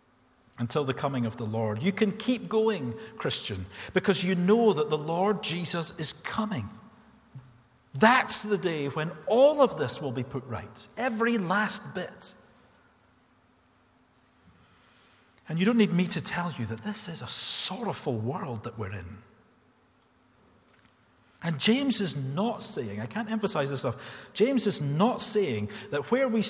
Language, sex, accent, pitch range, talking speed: English, male, British, 130-215 Hz, 155 wpm